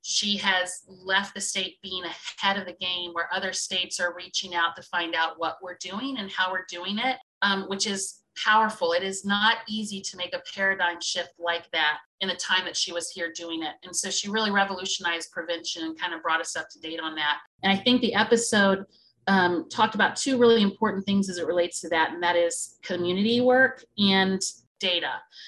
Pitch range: 185-215 Hz